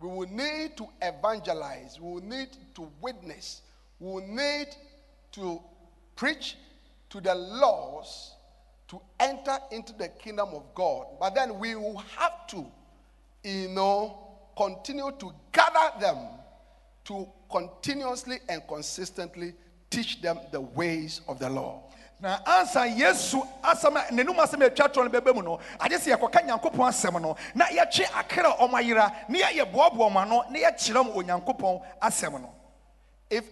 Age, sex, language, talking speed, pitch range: 50-69, male, English, 90 wpm, 180-270 Hz